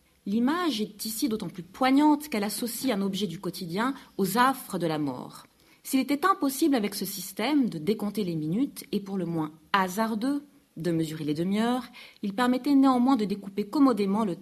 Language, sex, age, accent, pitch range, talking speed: French, female, 40-59, French, 170-250 Hz, 180 wpm